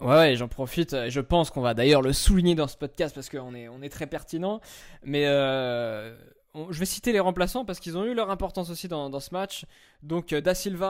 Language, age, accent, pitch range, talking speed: French, 20-39, French, 130-165 Hz, 240 wpm